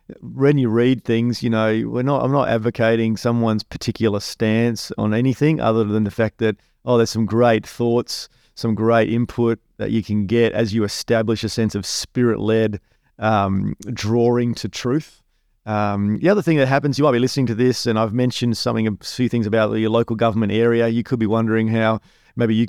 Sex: male